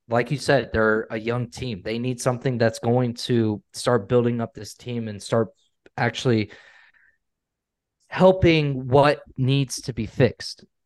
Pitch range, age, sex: 115-140 Hz, 20-39, male